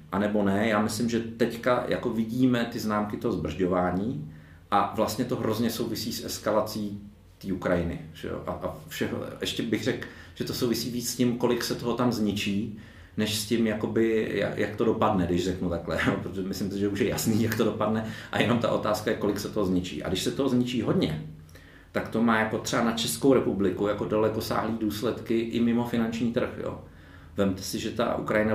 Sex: male